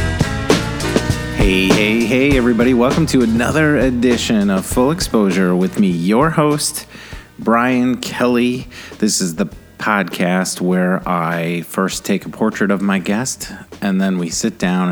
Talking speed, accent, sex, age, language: 140 wpm, American, male, 30-49, English